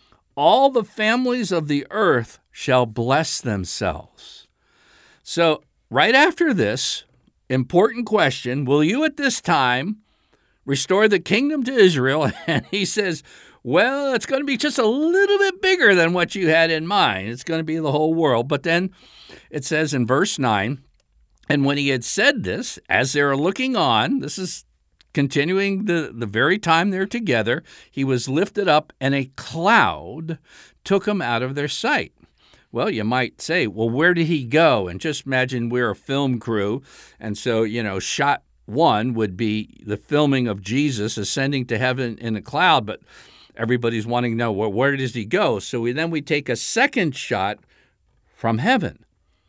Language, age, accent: English, 60-79, American